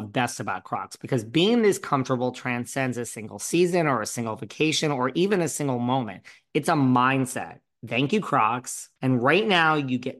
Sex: male